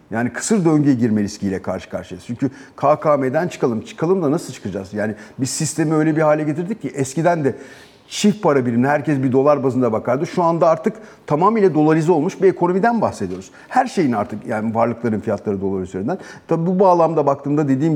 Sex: male